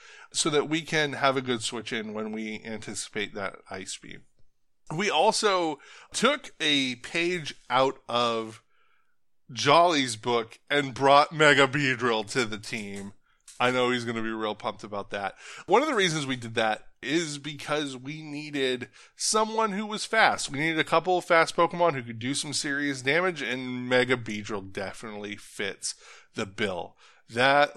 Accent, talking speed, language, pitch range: American, 165 wpm, English, 110-155 Hz